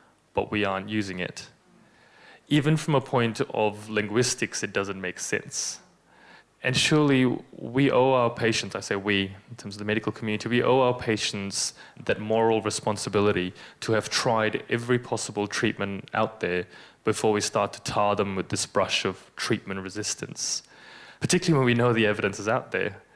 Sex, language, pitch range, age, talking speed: male, English, 100-115 Hz, 20-39, 170 wpm